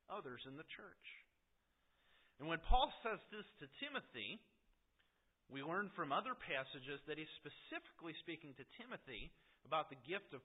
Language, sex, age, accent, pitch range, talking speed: English, male, 40-59, American, 140-185 Hz, 150 wpm